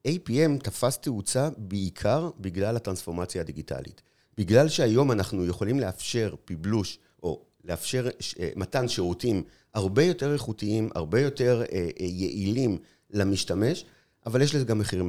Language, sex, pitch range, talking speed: Hebrew, male, 95-130 Hz, 125 wpm